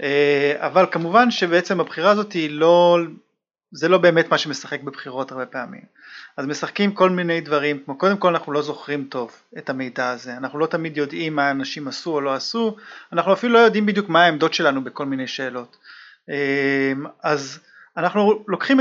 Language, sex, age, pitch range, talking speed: Hebrew, male, 30-49, 140-195 Hz, 170 wpm